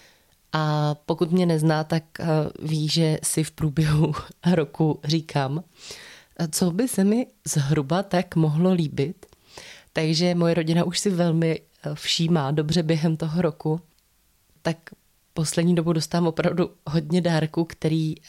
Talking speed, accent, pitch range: 130 wpm, native, 150-170 Hz